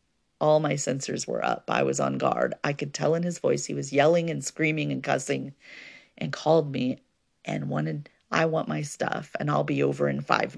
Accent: American